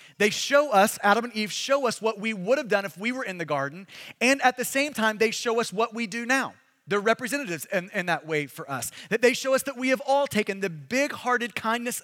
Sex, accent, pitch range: male, American, 190-270 Hz